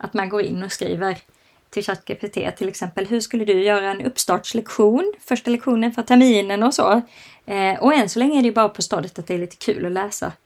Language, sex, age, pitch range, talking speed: Swedish, female, 20-39, 190-220 Hz, 230 wpm